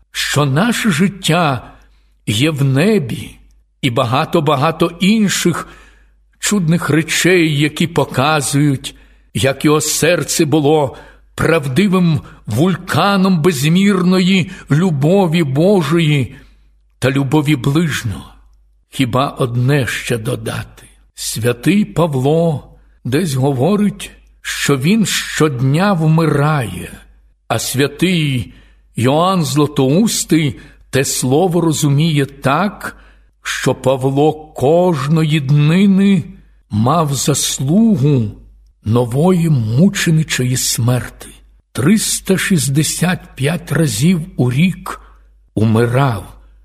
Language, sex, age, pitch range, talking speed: Ukrainian, male, 60-79, 125-175 Hz, 75 wpm